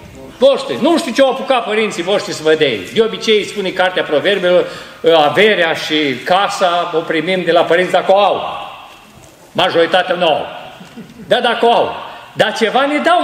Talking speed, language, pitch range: 175 wpm, Romanian, 185-275 Hz